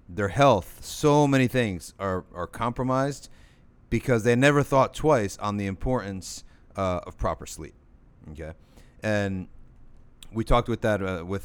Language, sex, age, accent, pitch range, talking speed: English, male, 30-49, American, 95-125 Hz, 145 wpm